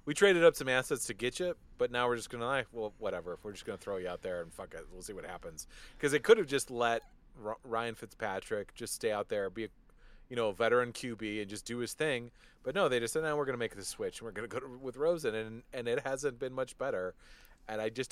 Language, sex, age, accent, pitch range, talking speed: English, male, 30-49, American, 105-135 Hz, 290 wpm